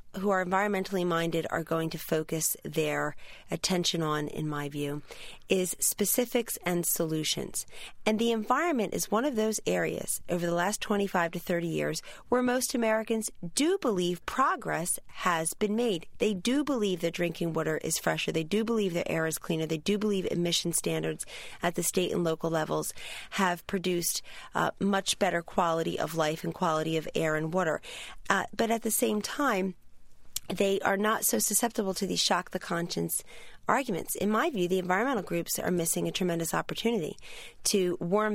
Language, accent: English, American